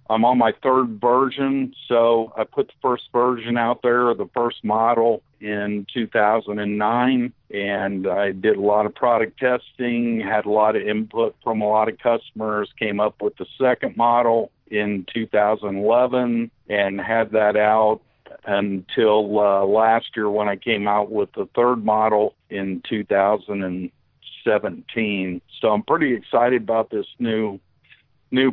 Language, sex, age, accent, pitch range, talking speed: English, male, 50-69, American, 105-120 Hz, 145 wpm